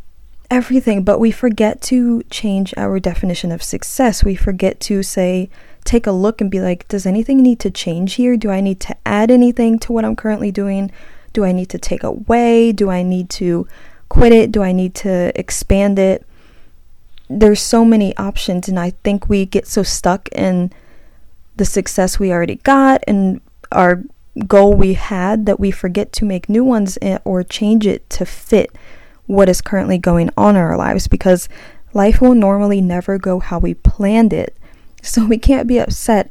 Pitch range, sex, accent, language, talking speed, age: 185-220 Hz, female, American, English, 185 wpm, 20-39